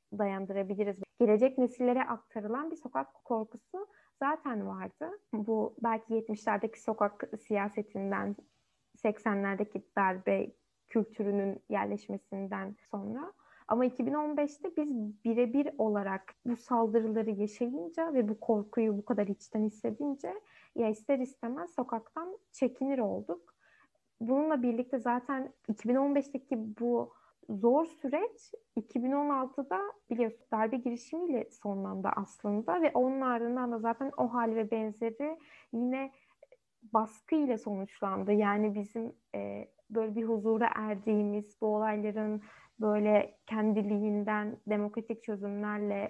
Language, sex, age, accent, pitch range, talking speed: Turkish, female, 10-29, native, 210-260 Hz, 100 wpm